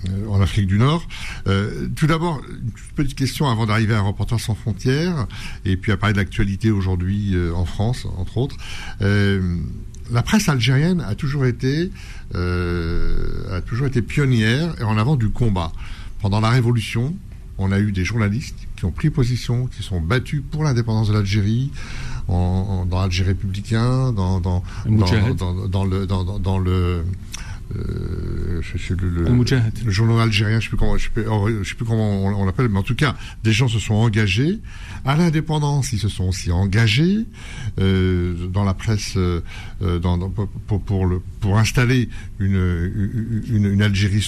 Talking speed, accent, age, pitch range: 155 wpm, French, 60-79, 95-120 Hz